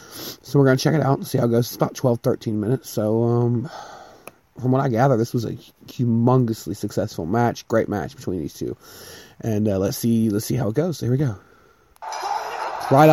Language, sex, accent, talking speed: English, male, American, 210 wpm